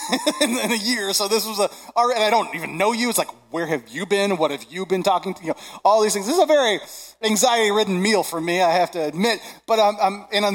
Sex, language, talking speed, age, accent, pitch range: male, English, 260 wpm, 30-49, American, 165-275 Hz